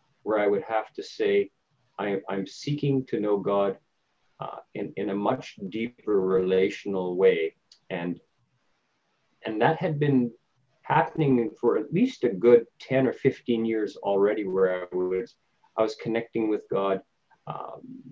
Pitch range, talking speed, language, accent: 95-135 Hz, 140 wpm, English, American